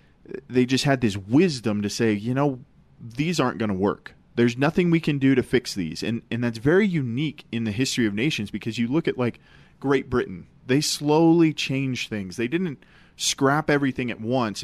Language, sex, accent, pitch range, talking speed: English, male, American, 110-145 Hz, 200 wpm